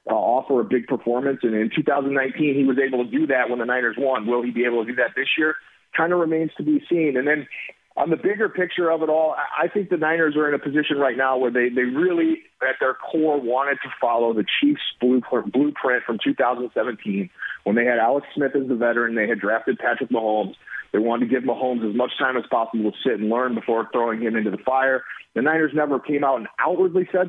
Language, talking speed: English, 240 wpm